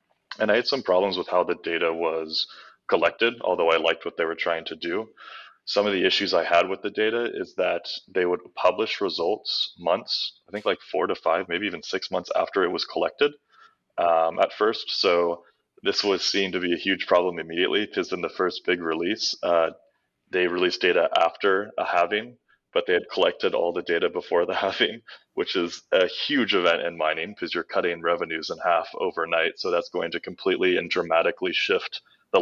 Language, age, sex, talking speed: English, 20-39, male, 200 wpm